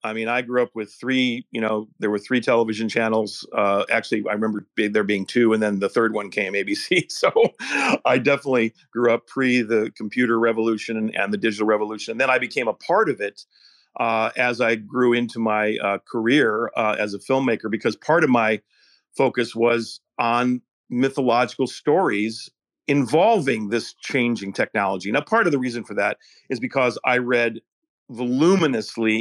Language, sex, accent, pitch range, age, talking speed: English, male, American, 110-125 Hz, 40-59, 175 wpm